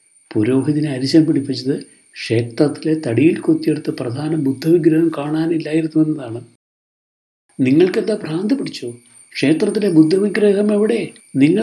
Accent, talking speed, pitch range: native, 90 wpm, 115-180 Hz